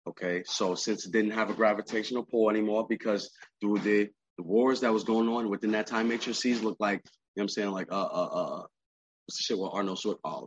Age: 20-39